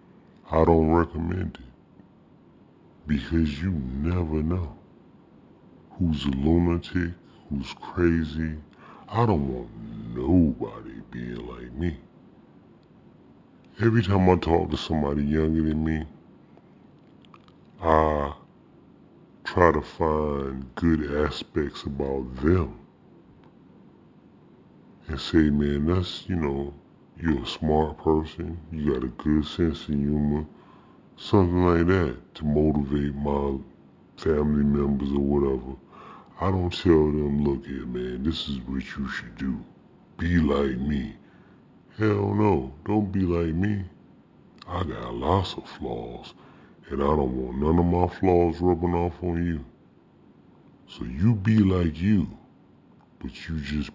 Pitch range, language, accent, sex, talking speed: 70-85 Hz, English, American, female, 125 wpm